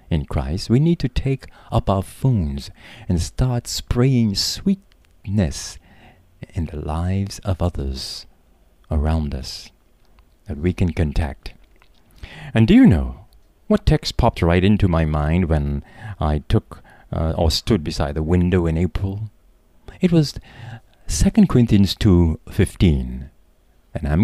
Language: English